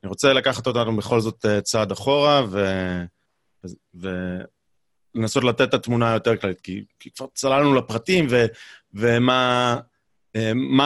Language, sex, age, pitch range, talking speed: Hebrew, male, 30-49, 105-135 Hz, 115 wpm